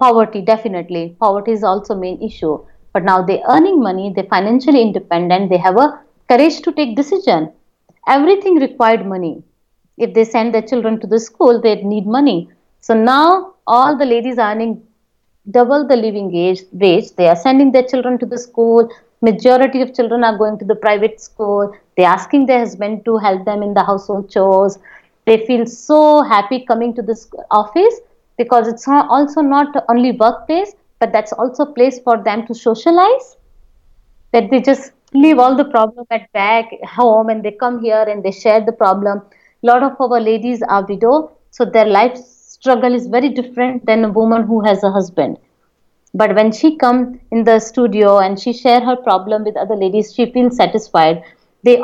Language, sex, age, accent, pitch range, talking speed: English, female, 50-69, Indian, 215-255 Hz, 180 wpm